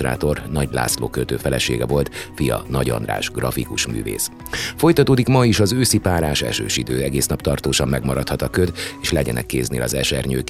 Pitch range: 65-85 Hz